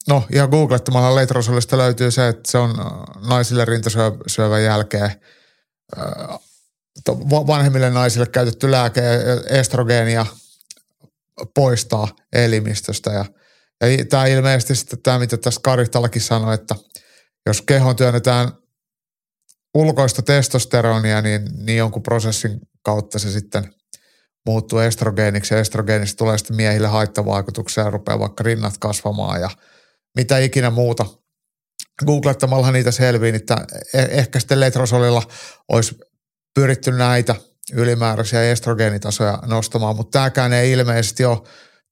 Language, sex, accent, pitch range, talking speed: Finnish, male, native, 110-130 Hz, 105 wpm